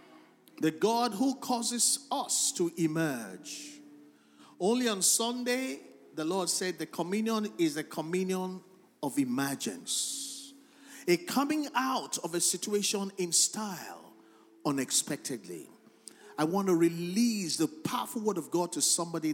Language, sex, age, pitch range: English, male, 50-69, 160-245 Hz